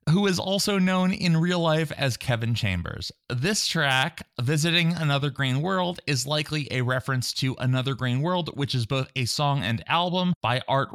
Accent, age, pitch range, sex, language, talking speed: American, 20-39, 120-155 Hz, male, English, 180 wpm